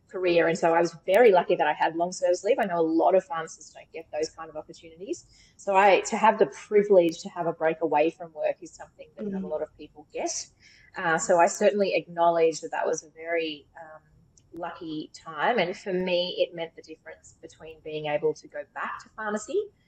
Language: English